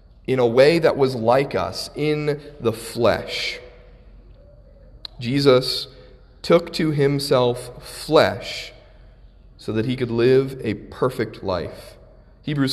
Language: English